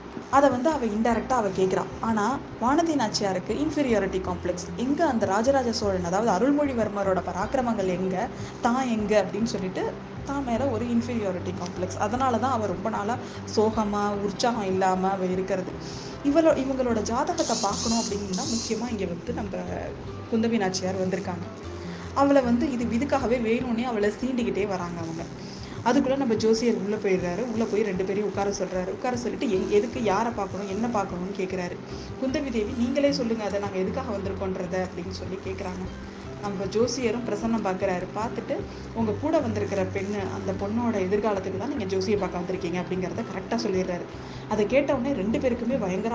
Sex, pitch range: female, 190-240 Hz